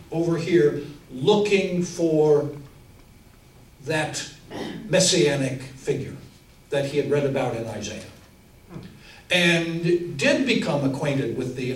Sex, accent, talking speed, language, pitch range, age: male, American, 100 wpm, English, 135-185 Hz, 60-79